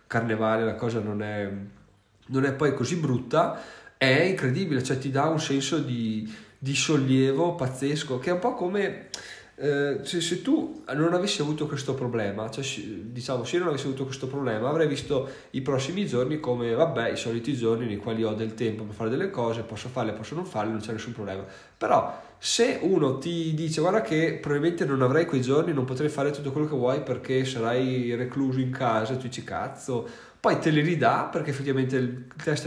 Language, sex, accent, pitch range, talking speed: Italian, male, native, 120-155 Hz, 195 wpm